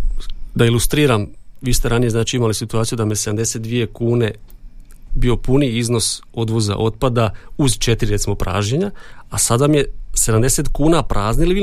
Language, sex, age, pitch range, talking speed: Croatian, male, 40-59, 105-130 Hz, 150 wpm